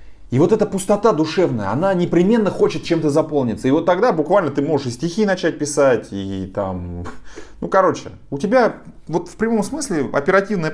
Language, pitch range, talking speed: Russian, 105-170 Hz, 180 wpm